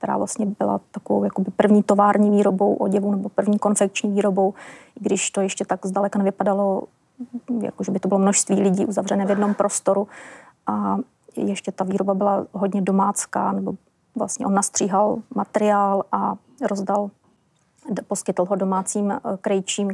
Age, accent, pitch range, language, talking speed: 30-49, native, 195-205 Hz, Czech, 140 wpm